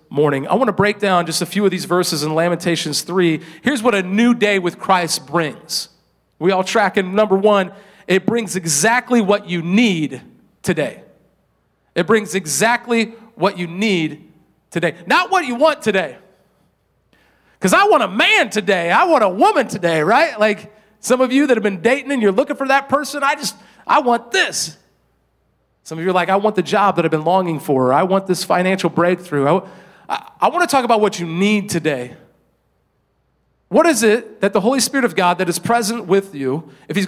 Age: 40-59